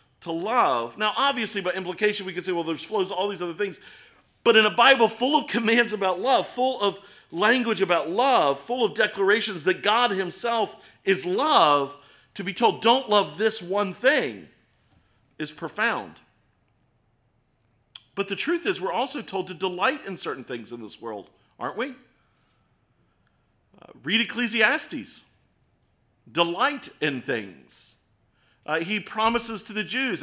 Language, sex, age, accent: English, male, 50-69, American